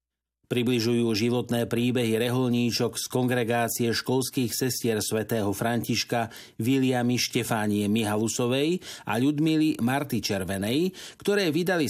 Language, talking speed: Slovak, 95 wpm